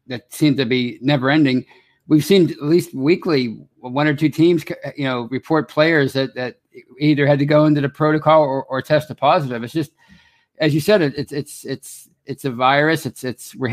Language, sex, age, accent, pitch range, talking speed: English, male, 50-69, American, 130-155 Hz, 205 wpm